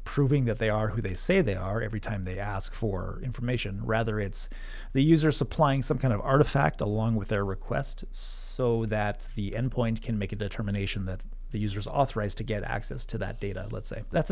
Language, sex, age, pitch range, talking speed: English, male, 30-49, 105-135 Hz, 210 wpm